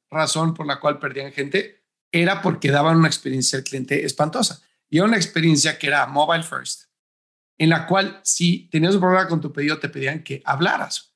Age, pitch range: 40-59, 145-180 Hz